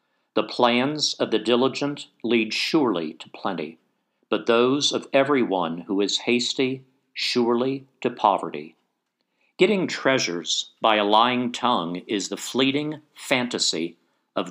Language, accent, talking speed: English, American, 125 wpm